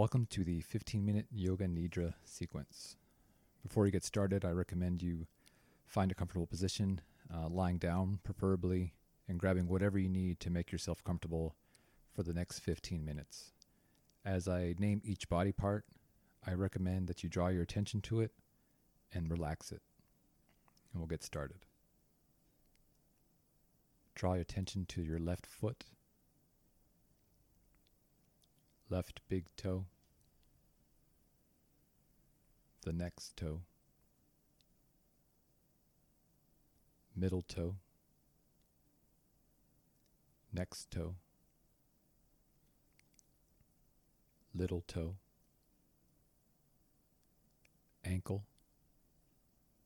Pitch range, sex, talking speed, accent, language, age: 85-95 Hz, male, 95 wpm, American, English, 30-49